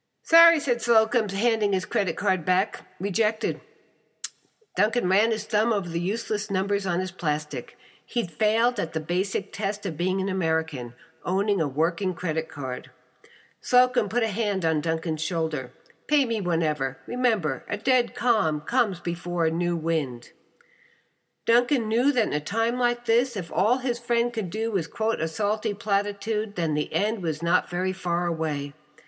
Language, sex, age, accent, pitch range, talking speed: English, female, 60-79, American, 170-230 Hz, 165 wpm